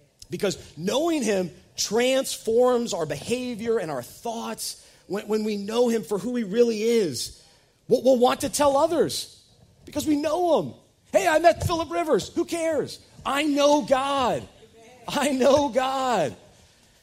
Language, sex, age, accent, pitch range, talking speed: English, male, 40-59, American, 165-240 Hz, 150 wpm